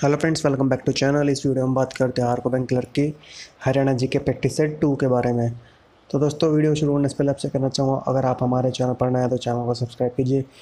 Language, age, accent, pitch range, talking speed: Hindi, 20-39, native, 135-150 Hz, 265 wpm